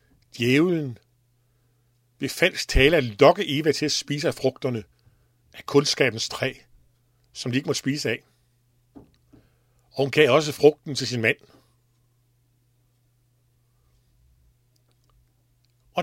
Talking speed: 110 wpm